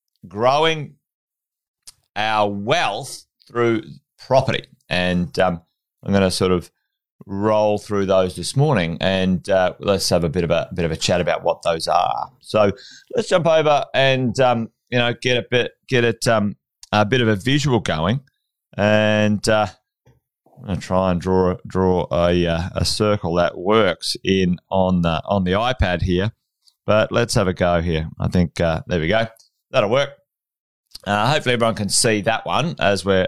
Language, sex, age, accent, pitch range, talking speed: English, male, 30-49, Australian, 95-120 Hz, 175 wpm